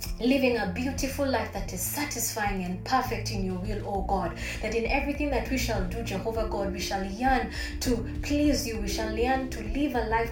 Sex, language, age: female, English, 20-39